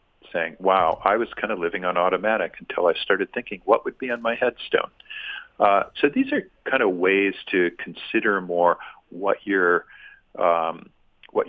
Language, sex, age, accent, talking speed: English, male, 50-69, American, 170 wpm